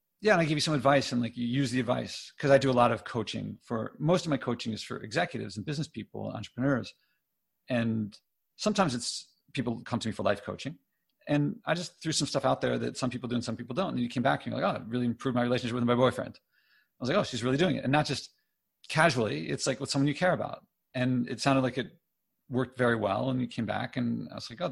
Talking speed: 270 wpm